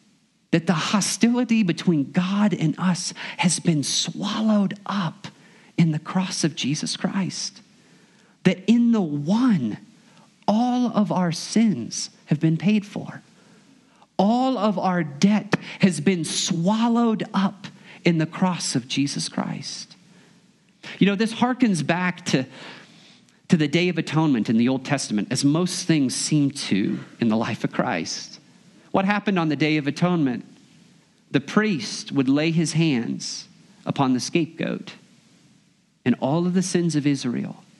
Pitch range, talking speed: 150-205 Hz, 145 wpm